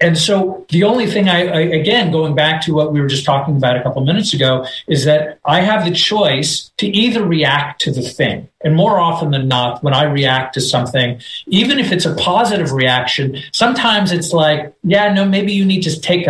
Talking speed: 215 wpm